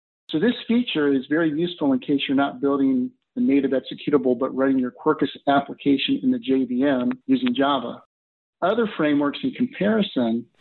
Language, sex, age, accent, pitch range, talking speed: English, male, 50-69, American, 135-190 Hz, 160 wpm